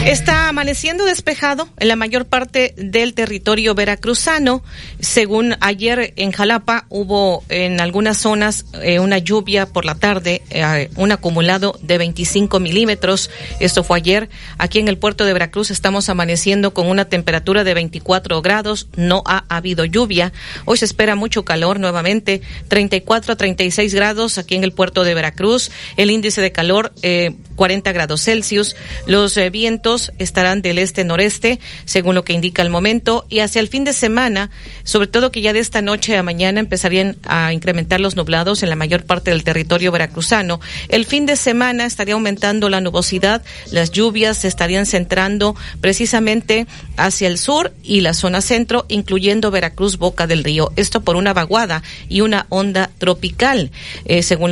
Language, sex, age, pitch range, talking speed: Spanish, female, 40-59, 180-220 Hz, 165 wpm